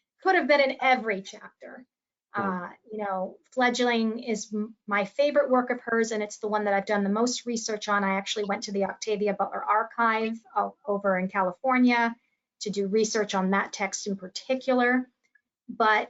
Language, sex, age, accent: English, female, 30-49, American